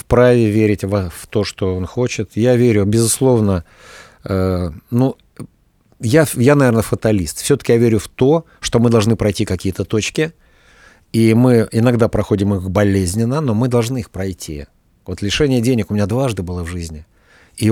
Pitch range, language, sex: 95-125 Hz, Russian, male